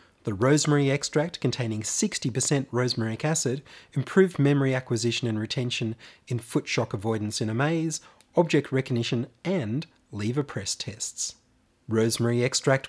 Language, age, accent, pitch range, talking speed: English, 30-49, Australian, 115-150 Hz, 125 wpm